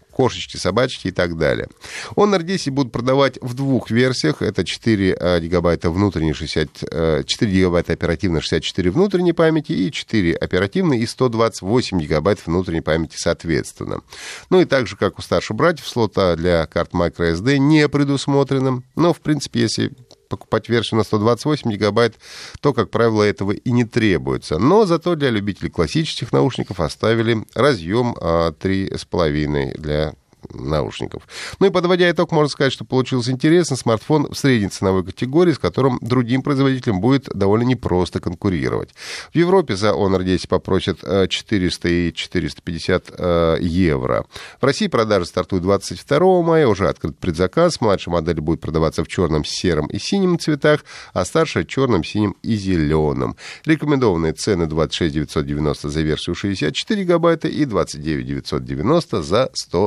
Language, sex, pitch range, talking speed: Russian, male, 85-135 Hz, 135 wpm